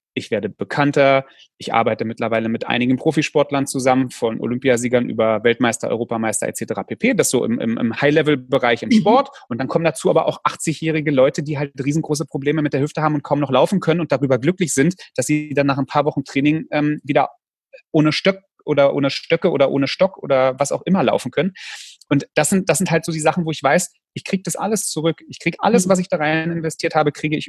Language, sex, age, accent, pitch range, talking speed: German, male, 30-49, German, 135-165 Hz, 220 wpm